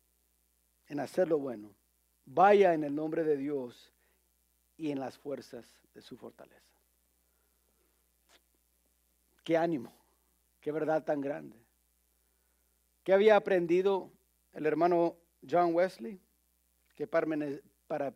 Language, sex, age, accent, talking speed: English, male, 50-69, Mexican, 100 wpm